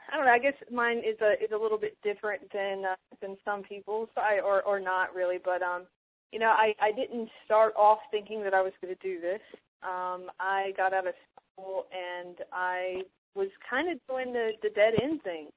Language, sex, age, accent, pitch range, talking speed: English, female, 20-39, American, 185-230 Hz, 215 wpm